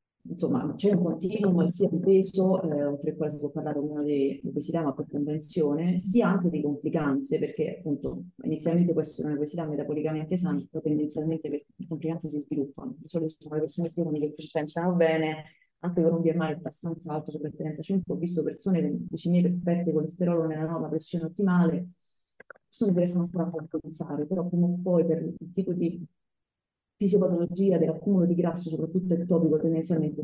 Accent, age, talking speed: native, 30-49, 170 wpm